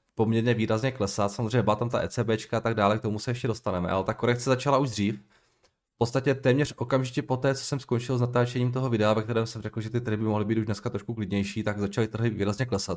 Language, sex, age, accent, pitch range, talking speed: Czech, male, 20-39, native, 105-125 Hz, 250 wpm